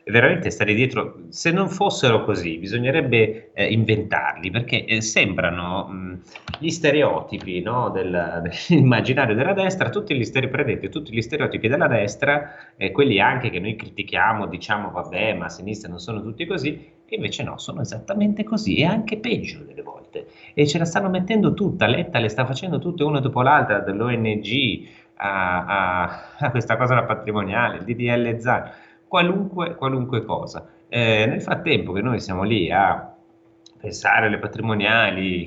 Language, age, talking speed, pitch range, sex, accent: Italian, 30-49, 160 wpm, 90-145 Hz, male, native